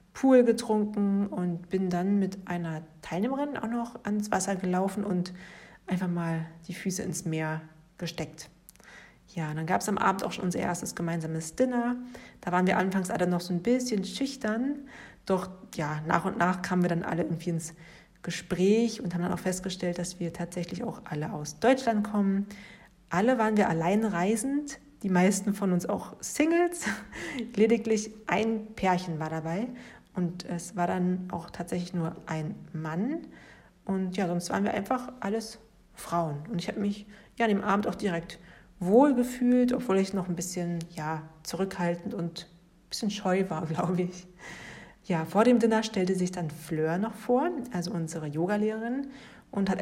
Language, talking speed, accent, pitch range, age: German, 170 wpm, German, 175-215 Hz, 40-59